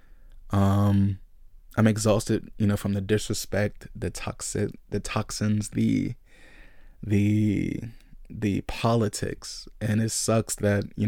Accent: American